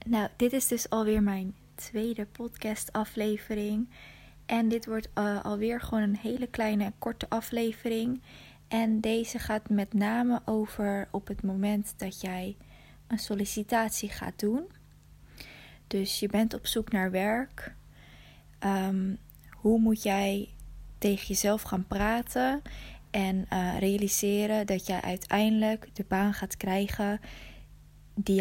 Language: Dutch